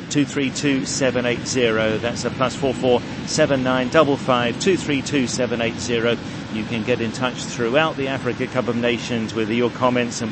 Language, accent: English, British